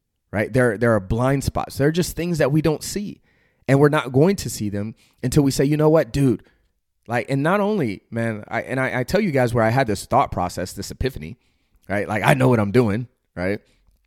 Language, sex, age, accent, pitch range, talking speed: English, male, 30-49, American, 105-135 Hz, 240 wpm